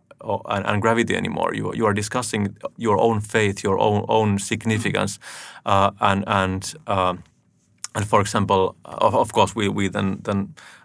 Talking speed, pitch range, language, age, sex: 155 wpm, 95-105 Hz, English, 30-49, male